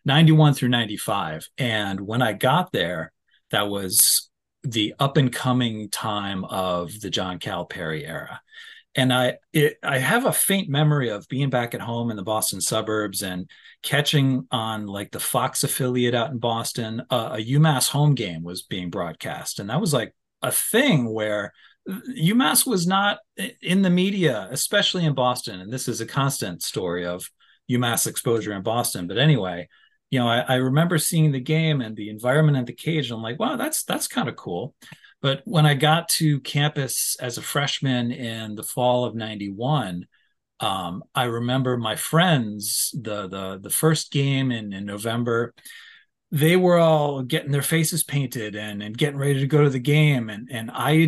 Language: English